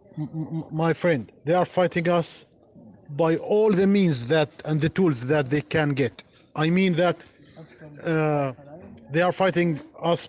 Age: 30-49